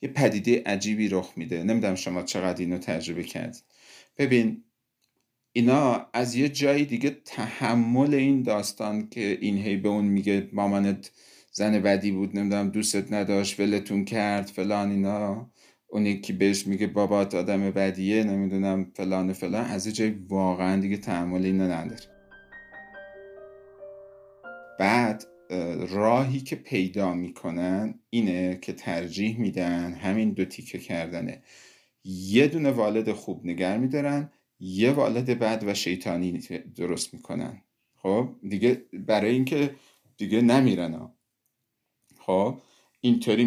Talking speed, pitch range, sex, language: 120 wpm, 95-125 Hz, male, Persian